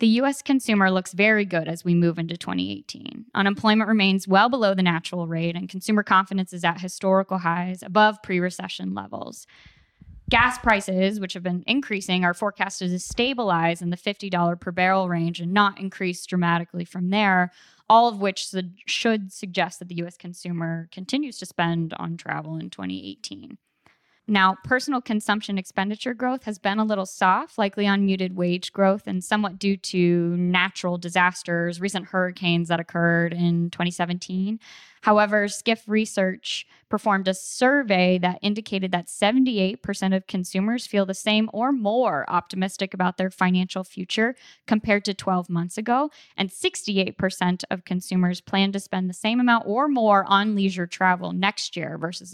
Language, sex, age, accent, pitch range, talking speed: English, female, 20-39, American, 180-210 Hz, 160 wpm